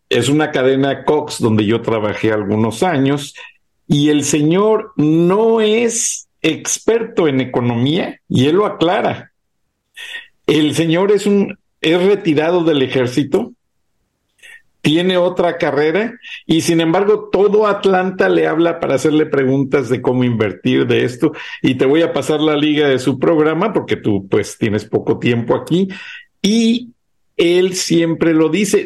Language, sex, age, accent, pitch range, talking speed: Spanish, male, 50-69, Mexican, 135-185 Hz, 145 wpm